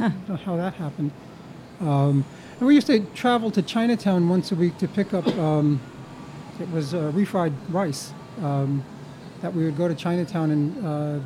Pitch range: 150-185 Hz